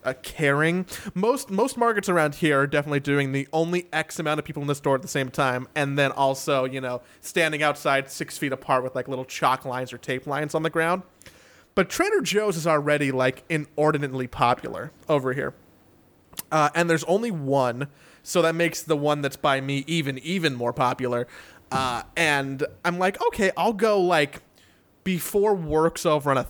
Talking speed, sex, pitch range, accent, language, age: 190 wpm, male, 135-170 Hz, American, English, 30-49